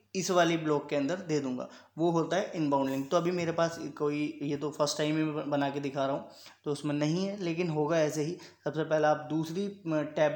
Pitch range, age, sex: 145-165 Hz, 20-39, male